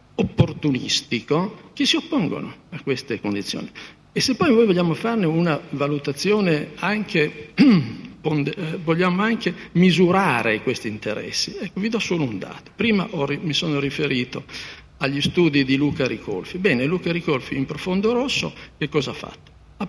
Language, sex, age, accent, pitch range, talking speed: Italian, male, 50-69, native, 135-190 Hz, 150 wpm